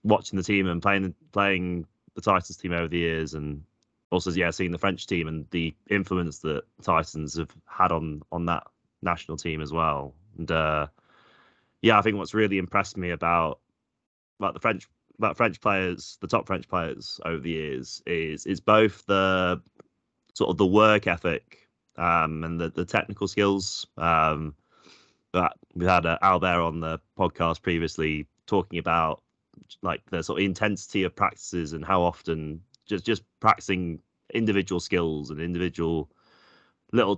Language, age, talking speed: English, 20-39, 165 wpm